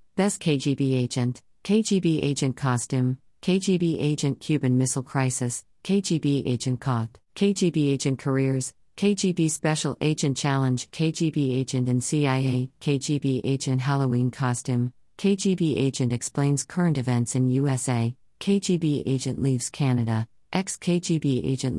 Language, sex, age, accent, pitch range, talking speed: German, female, 40-59, American, 125-155 Hz, 115 wpm